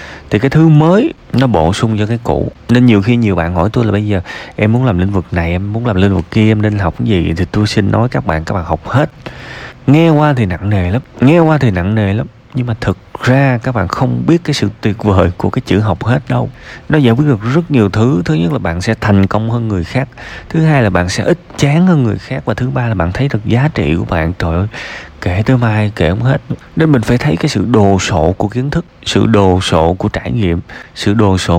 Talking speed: 270 wpm